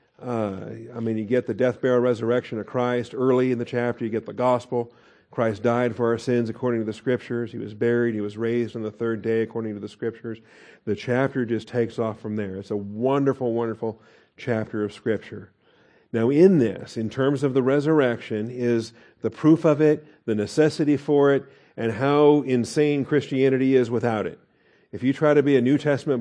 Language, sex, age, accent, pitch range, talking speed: English, male, 50-69, American, 110-130 Hz, 200 wpm